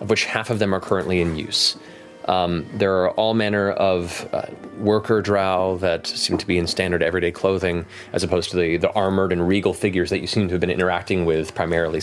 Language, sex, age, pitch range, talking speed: English, male, 30-49, 90-105 Hz, 220 wpm